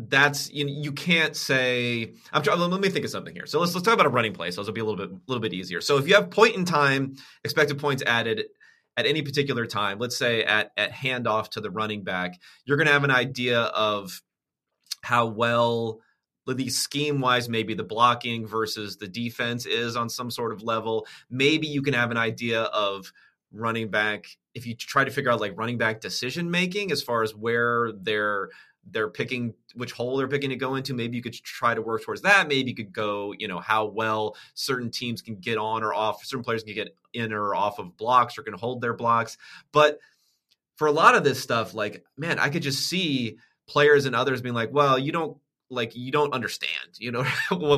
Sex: male